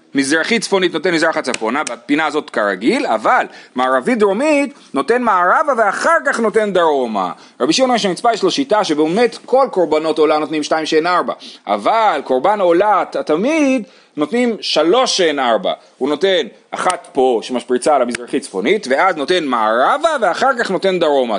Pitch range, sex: 165-245 Hz, male